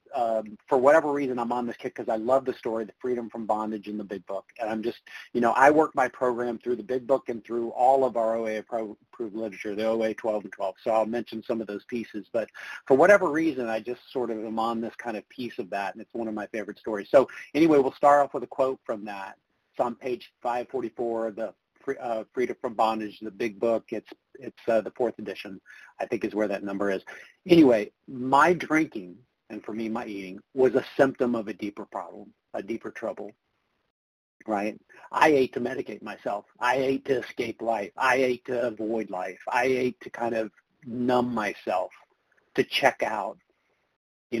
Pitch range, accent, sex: 110-125 Hz, American, male